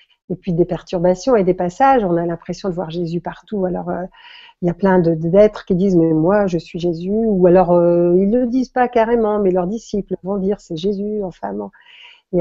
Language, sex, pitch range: French, female, 180-215 Hz